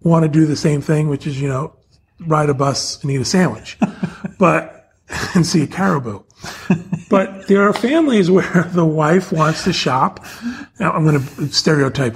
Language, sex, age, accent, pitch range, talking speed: English, male, 40-59, American, 140-180 Hz, 185 wpm